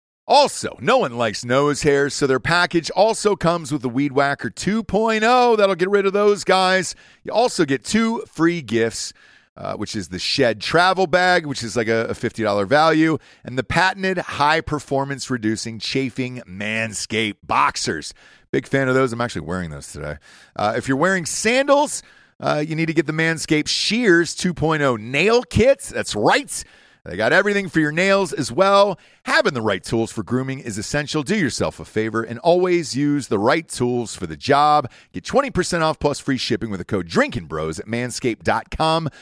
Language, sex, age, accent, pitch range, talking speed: English, male, 40-59, American, 115-185 Hz, 180 wpm